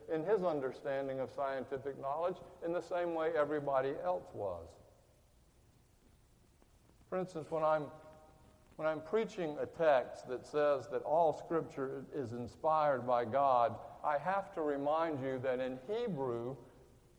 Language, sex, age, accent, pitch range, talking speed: English, male, 60-79, American, 130-170 Hz, 135 wpm